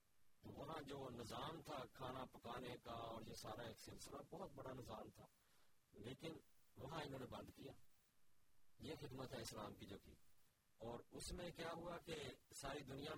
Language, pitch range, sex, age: Urdu, 105-135 Hz, male, 50-69